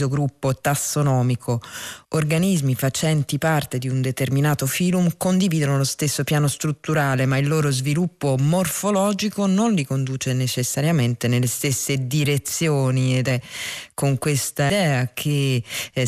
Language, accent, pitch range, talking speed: Italian, native, 130-155 Hz, 125 wpm